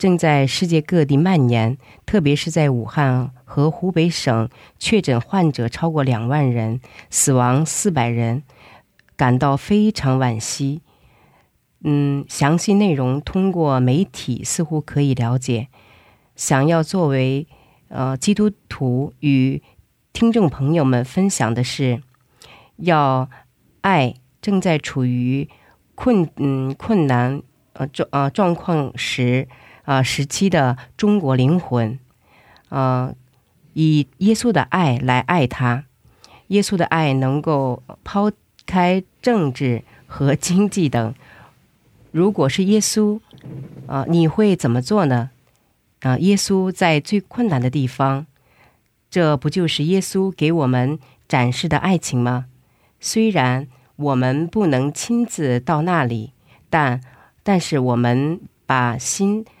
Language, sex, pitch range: Korean, female, 125-170 Hz